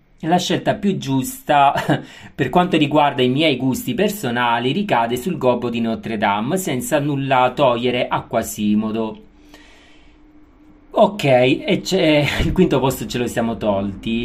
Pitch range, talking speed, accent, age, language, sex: 120-160 Hz, 135 wpm, native, 40-59, Italian, male